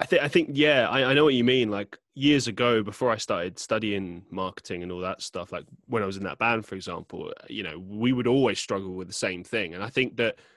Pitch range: 100-125 Hz